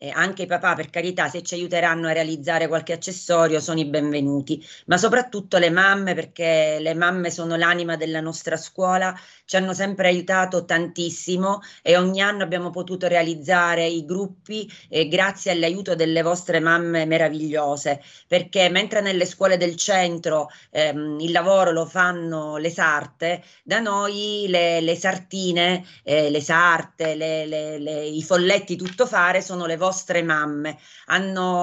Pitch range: 165-185 Hz